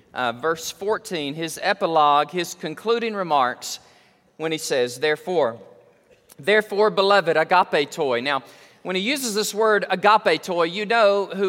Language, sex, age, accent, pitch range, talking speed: English, male, 40-59, American, 180-230 Hz, 140 wpm